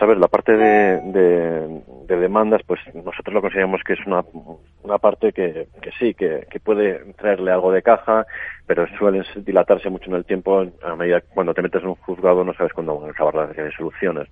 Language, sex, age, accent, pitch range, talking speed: Spanish, male, 40-59, Spanish, 85-110 Hz, 200 wpm